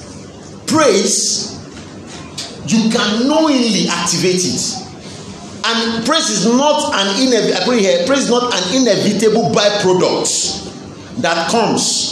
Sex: male